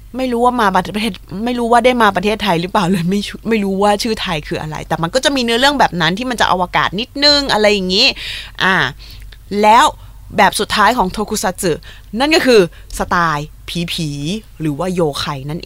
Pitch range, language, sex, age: 165-225 Hz, Thai, female, 20-39